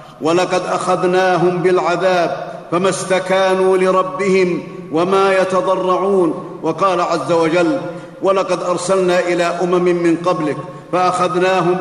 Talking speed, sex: 90 wpm, male